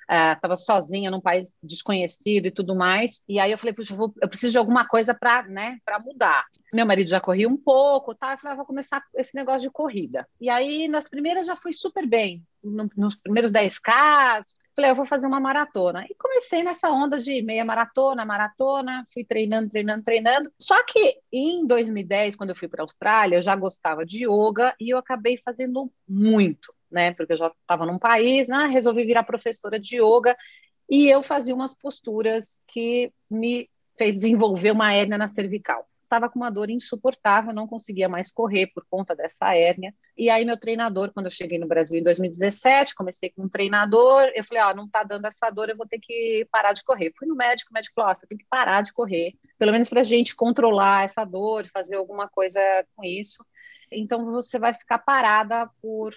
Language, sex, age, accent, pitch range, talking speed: Portuguese, female, 40-59, Brazilian, 200-255 Hz, 205 wpm